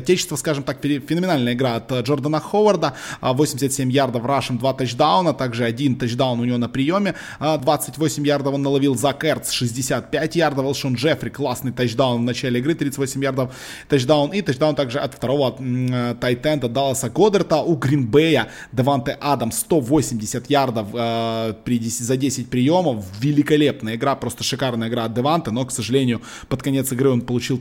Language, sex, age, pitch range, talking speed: Russian, male, 20-39, 120-145 Hz, 160 wpm